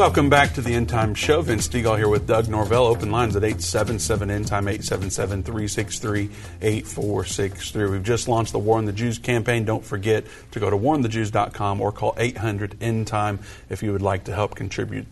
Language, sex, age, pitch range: English, male, 40-59, 105-115 Hz